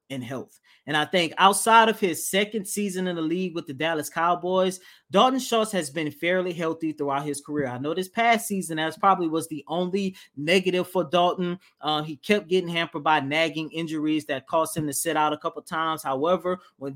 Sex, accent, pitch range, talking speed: male, American, 155-200 Hz, 210 wpm